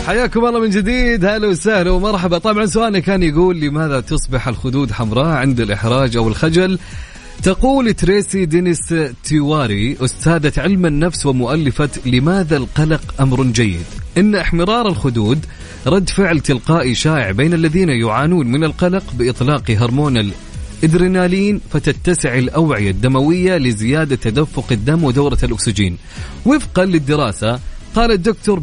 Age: 30-49